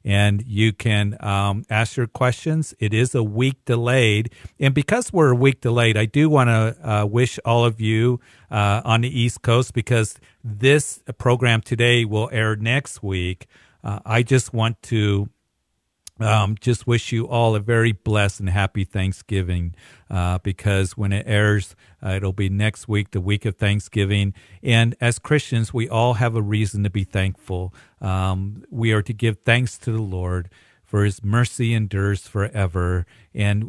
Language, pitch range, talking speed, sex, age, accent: English, 100-115 Hz, 170 wpm, male, 50-69, American